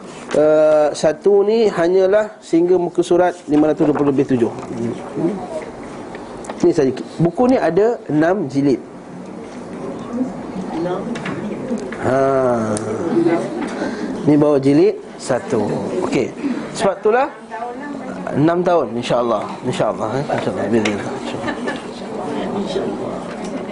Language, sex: Malay, male